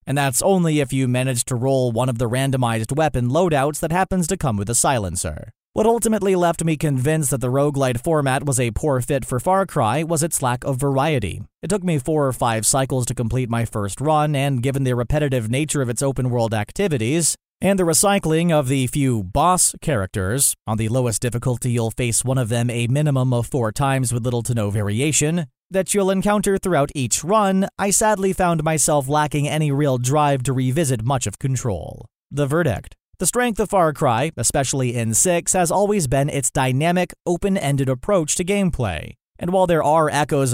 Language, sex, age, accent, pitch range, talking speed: English, male, 30-49, American, 125-165 Hz, 200 wpm